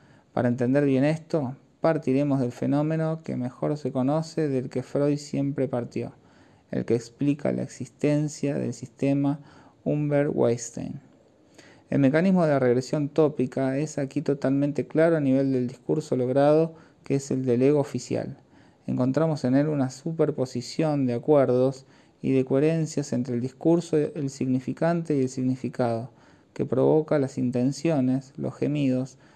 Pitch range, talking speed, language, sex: 125-145 Hz, 140 wpm, Spanish, male